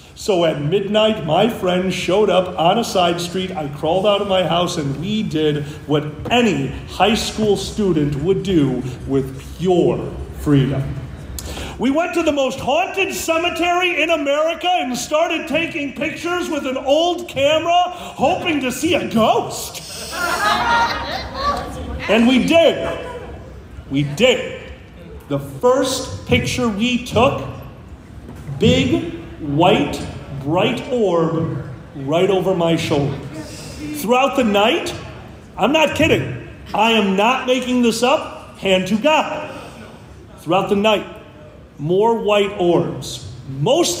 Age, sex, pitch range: 40-59, male, 150-245 Hz